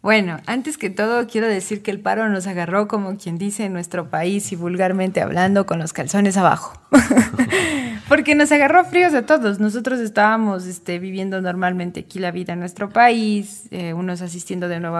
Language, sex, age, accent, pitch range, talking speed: Spanish, female, 20-39, Mexican, 175-210 Hz, 185 wpm